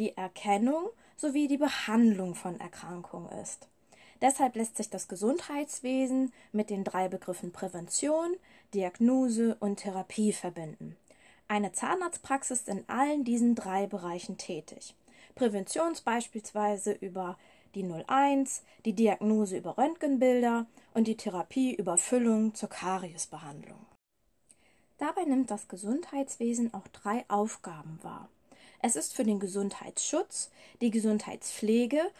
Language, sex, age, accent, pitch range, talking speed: German, female, 20-39, German, 195-260 Hz, 115 wpm